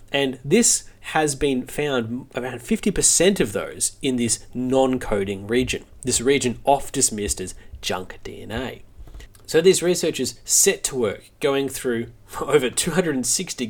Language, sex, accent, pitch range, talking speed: English, male, Australian, 115-155 Hz, 125 wpm